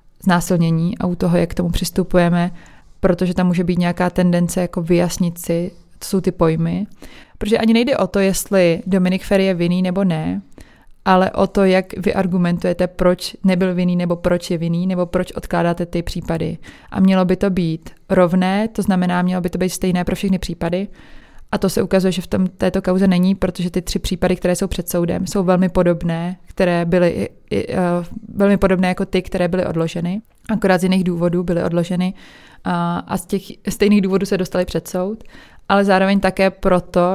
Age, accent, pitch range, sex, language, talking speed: 20-39, native, 175-195 Hz, female, Czech, 185 wpm